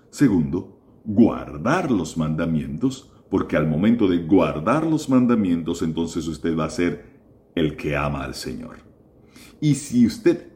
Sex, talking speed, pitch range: male, 135 wpm, 80-130 Hz